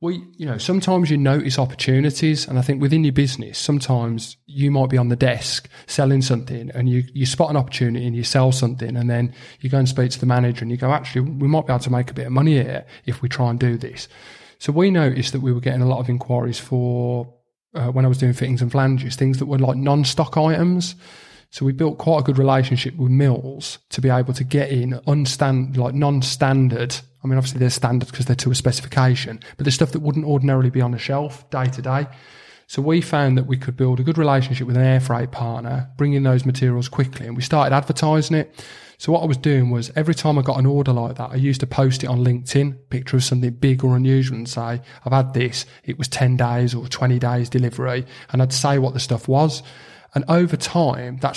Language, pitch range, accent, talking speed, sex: English, 125-140 Hz, British, 240 wpm, male